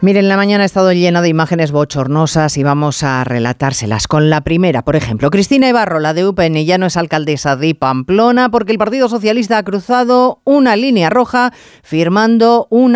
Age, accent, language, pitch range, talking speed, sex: 40-59, Spanish, Spanish, 150-230 Hz, 190 wpm, female